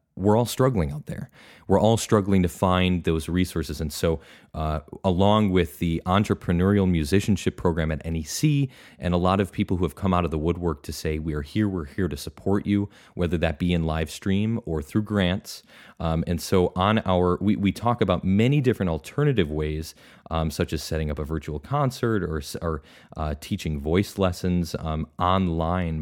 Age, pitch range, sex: 30-49, 80-100 Hz, male